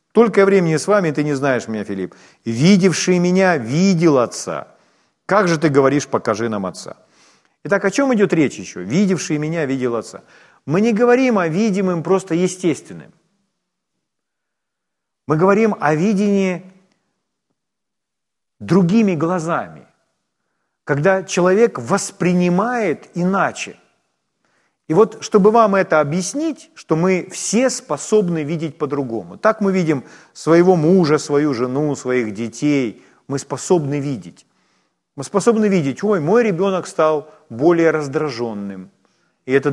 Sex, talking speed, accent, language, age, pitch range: male, 125 wpm, native, Ukrainian, 40-59, 140-195 Hz